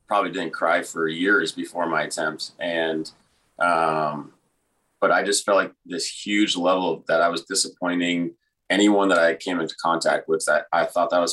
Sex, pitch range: male, 80-90 Hz